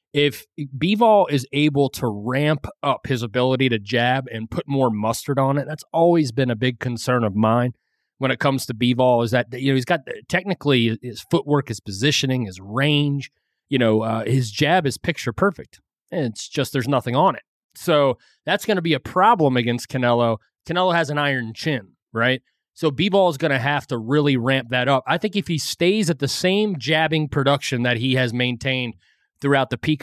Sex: male